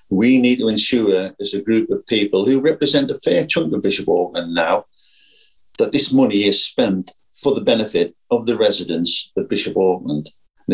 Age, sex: 50-69, male